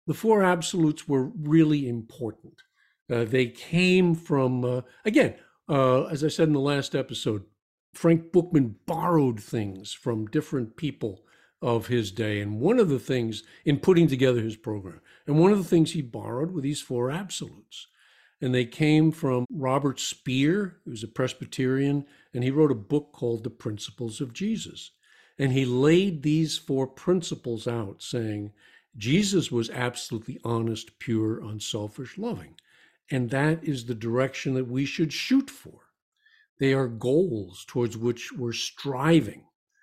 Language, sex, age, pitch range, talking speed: English, male, 50-69, 120-160 Hz, 155 wpm